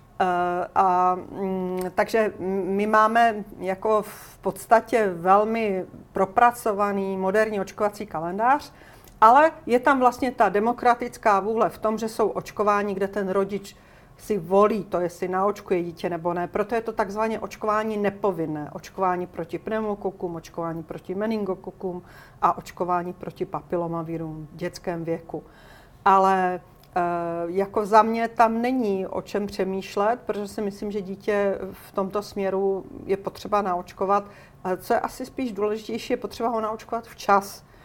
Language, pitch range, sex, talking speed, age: Czech, 180-220 Hz, female, 135 wpm, 40-59